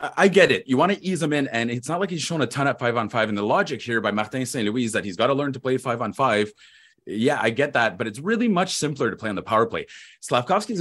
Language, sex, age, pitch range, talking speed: English, male, 30-49, 110-165 Hz, 290 wpm